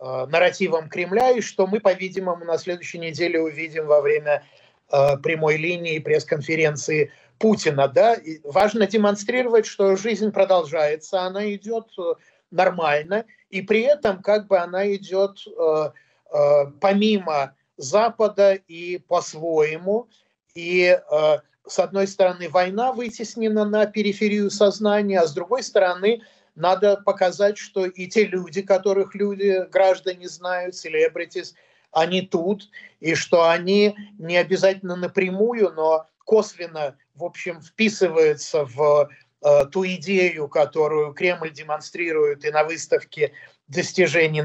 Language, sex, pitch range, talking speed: Russian, male, 160-205 Hz, 120 wpm